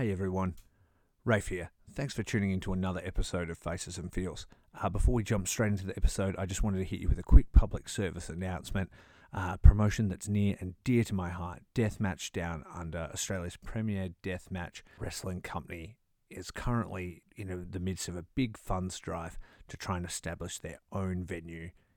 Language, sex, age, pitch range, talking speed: English, male, 30-49, 85-100 Hz, 195 wpm